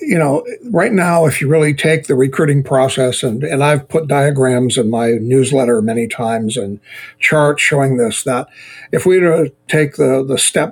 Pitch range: 130-155 Hz